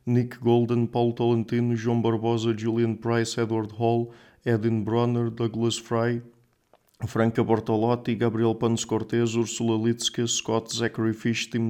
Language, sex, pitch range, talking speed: English, male, 115-120 Hz, 130 wpm